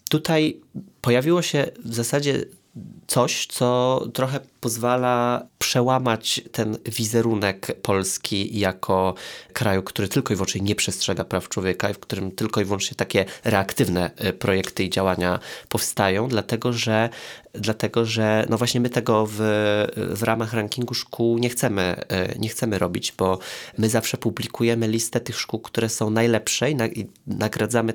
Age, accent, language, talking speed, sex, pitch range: 20-39, native, Polish, 140 wpm, male, 105-120 Hz